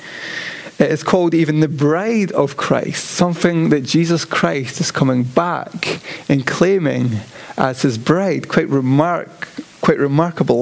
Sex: male